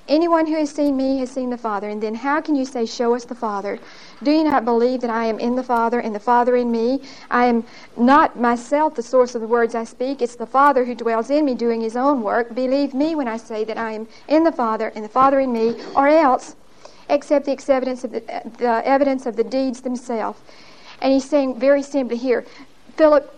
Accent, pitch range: American, 235-270 Hz